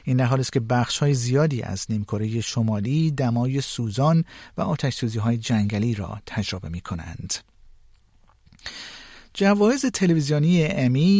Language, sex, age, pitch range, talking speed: Persian, male, 50-69, 110-150 Hz, 125 wpm